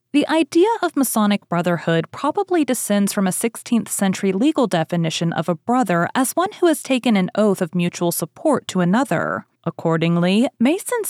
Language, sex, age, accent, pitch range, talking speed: English, female, 30-49, American, 175-260 Hz, 160 wpm